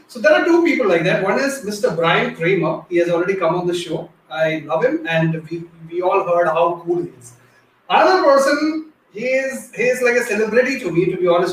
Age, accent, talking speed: 30-49, Indian, 230 wpm